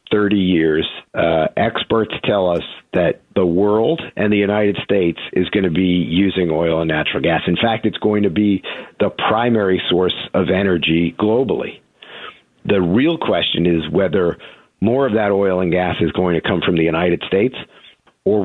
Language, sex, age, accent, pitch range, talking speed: English, male, 50-69, American, 90-105 Hz, 175 wpm